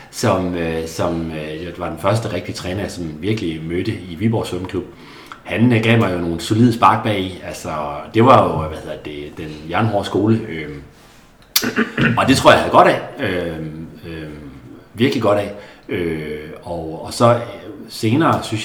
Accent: native